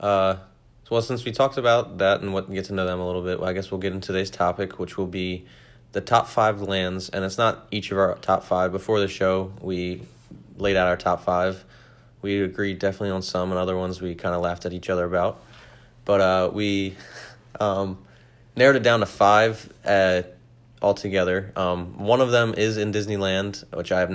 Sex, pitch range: male, 90-110 Hz